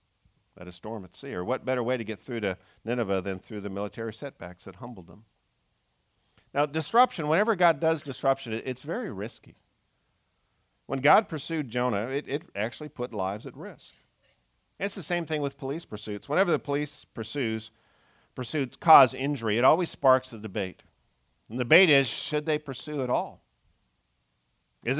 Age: 50-69